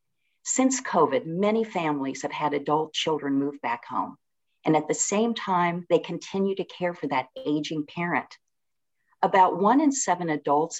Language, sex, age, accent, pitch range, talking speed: English, female, 50-69, American, 150-190 Hz, 160 wpm